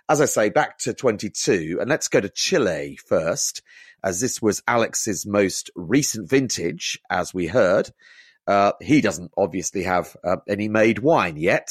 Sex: male